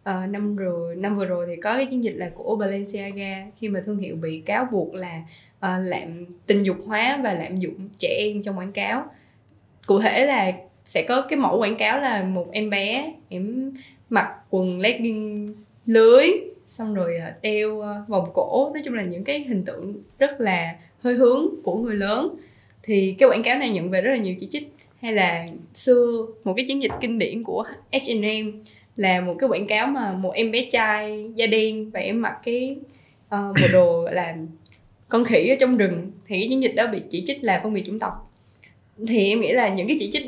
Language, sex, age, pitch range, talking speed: Vietnamese, female, 10-29, 185-255 Hz, 210 wpm